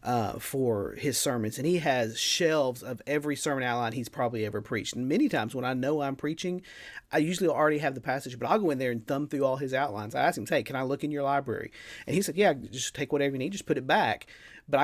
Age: 40-59